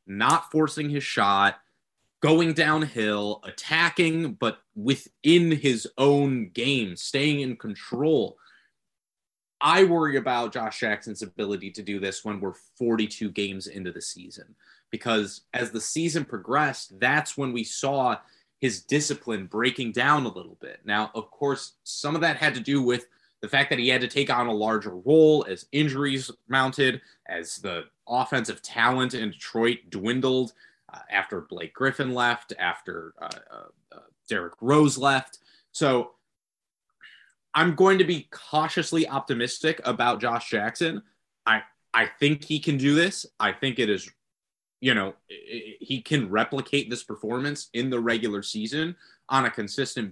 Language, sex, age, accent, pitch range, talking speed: English, male, 30-49, American, 110-150 Hz, 150 wpm